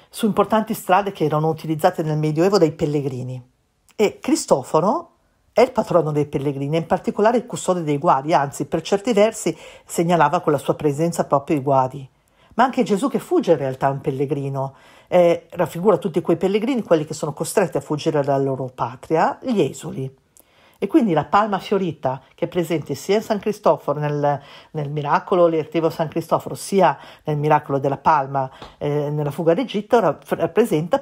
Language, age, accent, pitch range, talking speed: Italian, 50-69, native, 150-200 Hz, 170 wpm